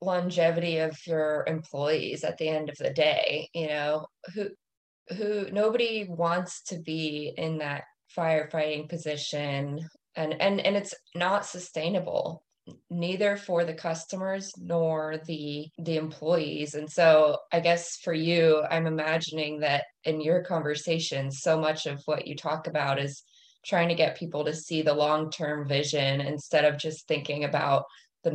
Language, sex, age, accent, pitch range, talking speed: English, female, 20-39, American, 150-180 Hz, 150 wpm